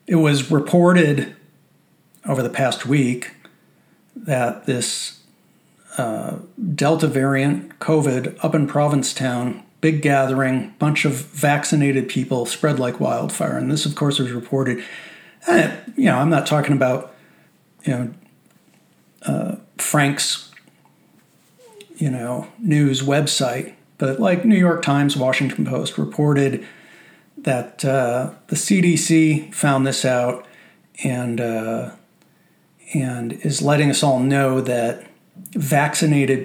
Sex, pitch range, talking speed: male, 135-165 Hz, 115 wpm